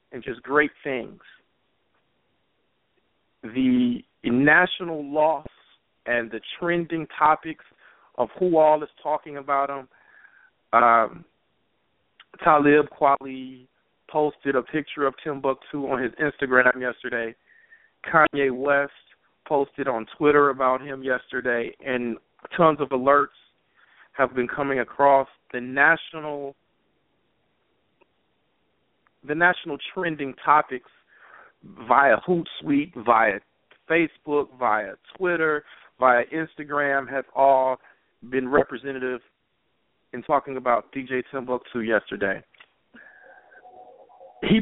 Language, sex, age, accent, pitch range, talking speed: English, male, 40-59, American, 125-155 Hz, 95 wpm